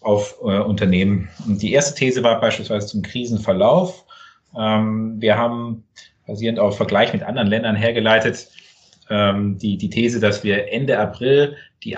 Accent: German